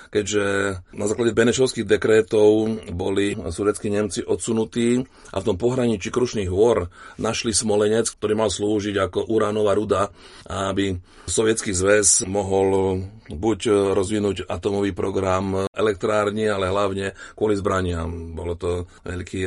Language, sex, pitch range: Slovak, male, 90-105 Hz